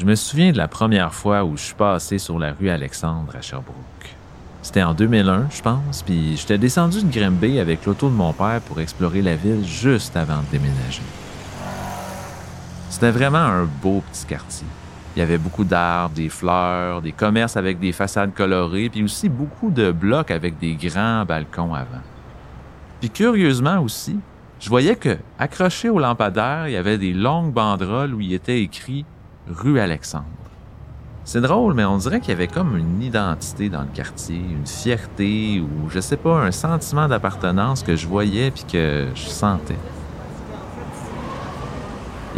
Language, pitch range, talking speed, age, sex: French, 80-115 Hz, 175 wpm, 40-59, male